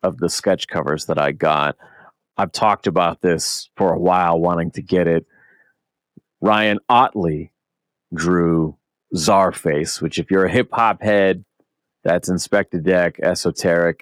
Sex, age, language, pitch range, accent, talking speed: male, 30-49, English, 85-105 Hz, American, 135 wpm